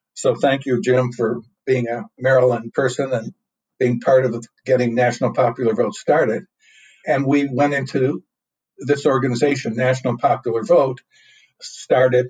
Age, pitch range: 60-79, 120-135 Hz